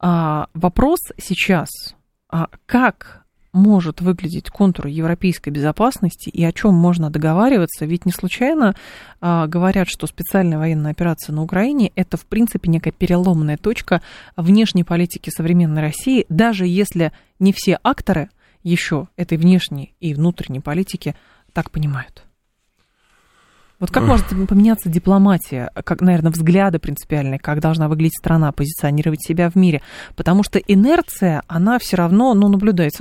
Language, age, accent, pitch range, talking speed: Russian, 20-39, native, 165-220 Hz, 130 wpm